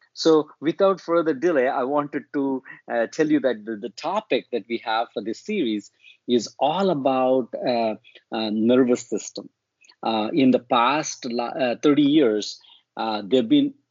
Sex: male